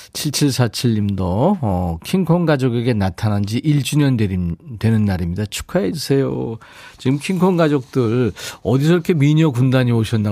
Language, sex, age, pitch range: Korean, male, 40-59, 105-150 Hz